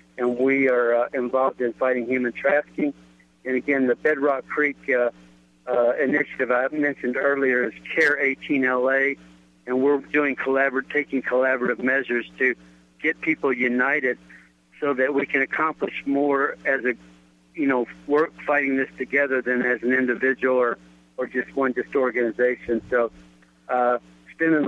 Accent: American